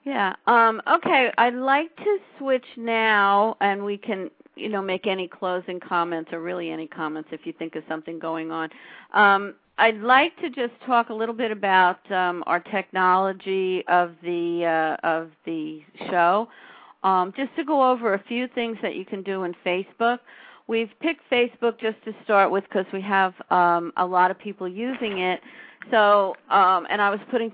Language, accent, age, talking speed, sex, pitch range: English, American, 50-69, 185 wpm, female, 180-230 Hz